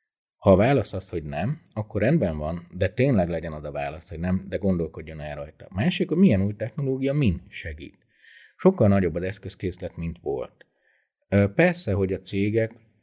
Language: Hungarian